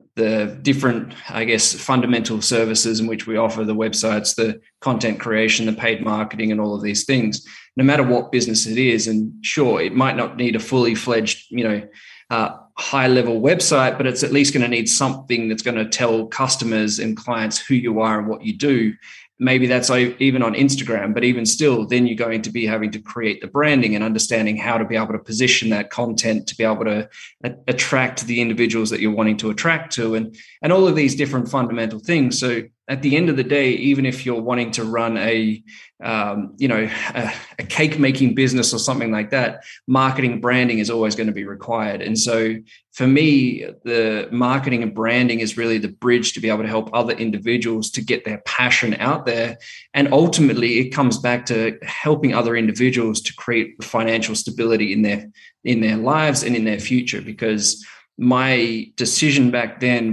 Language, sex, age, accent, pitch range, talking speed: English, male, 20-39, Australian, 110-125 Hz, 200 wpm